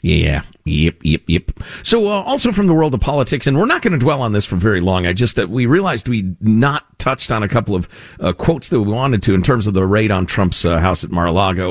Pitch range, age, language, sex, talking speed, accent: 95-150 Hz, 50-69, English, male, 265 wpm, American